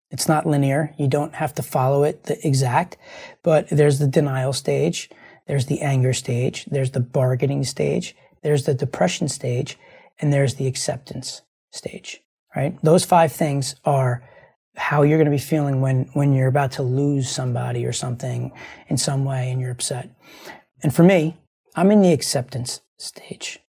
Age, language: 30-49, English